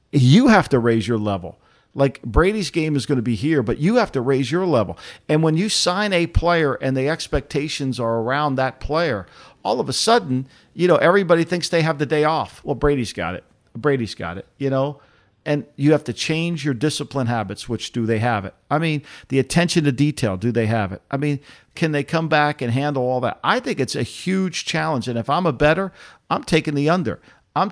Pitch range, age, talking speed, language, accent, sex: 120-160 Hz, 50-69, 225 wpm, English, American, male